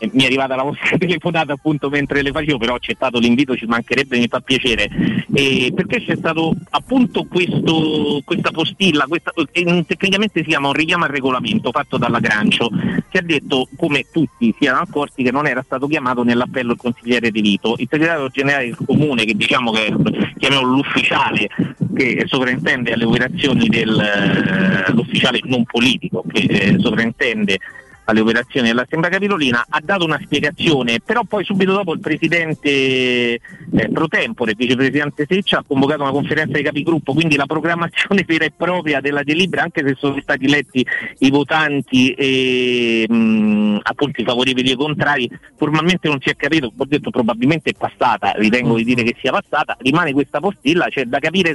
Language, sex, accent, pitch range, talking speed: Italian, male, native, 125-160 Hz, 170 wpm